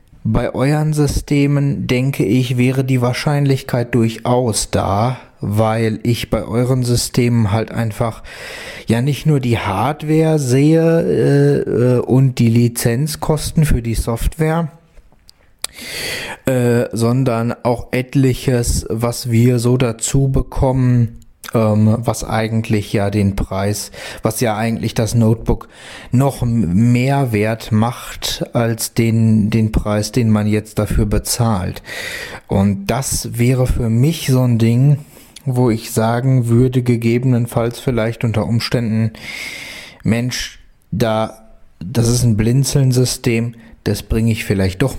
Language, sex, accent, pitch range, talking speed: German, male, German, 110-130 Hz, 120 wpm